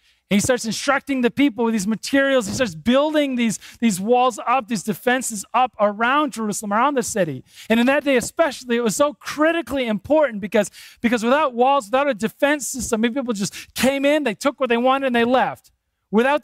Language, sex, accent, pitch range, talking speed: English, male, American, 210-280 Hz, 200 wpm